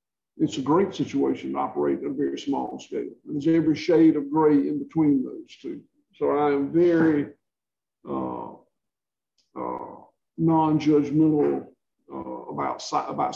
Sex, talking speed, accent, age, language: male, 140 wpm, American, 50-69, English